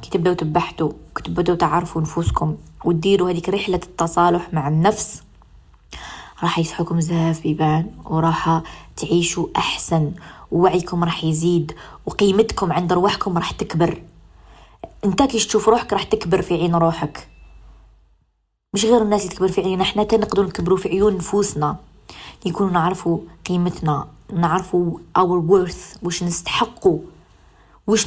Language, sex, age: Arabic, female, 20-39